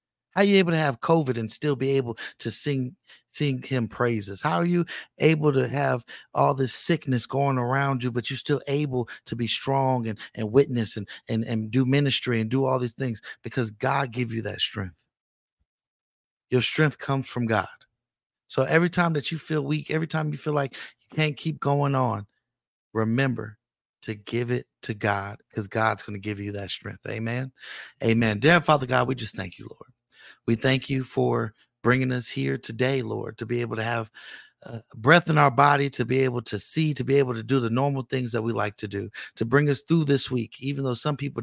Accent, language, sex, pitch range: American, English, male, 115-140 Hz